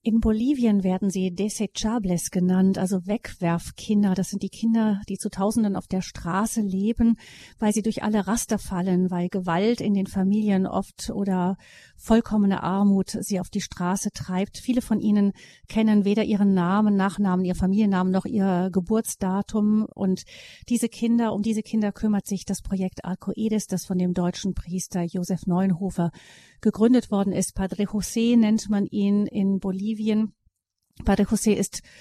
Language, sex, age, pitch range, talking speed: German, female, 40-59, 190-215 Hz, 155 wpm